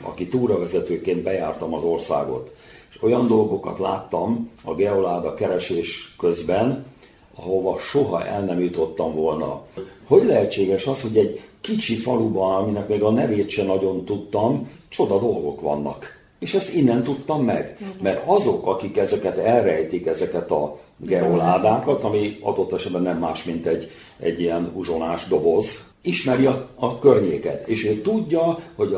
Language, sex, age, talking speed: Hungarian, male, 50-69, 140 wpm